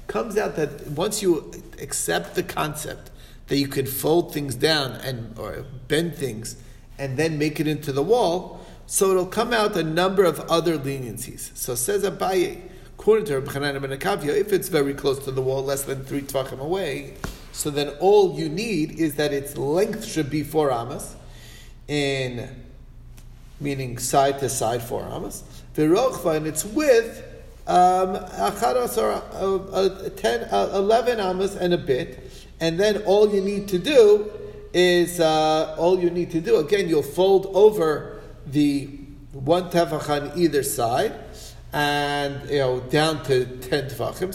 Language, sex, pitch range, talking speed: English, male, 140-185 Hz, 155 wpm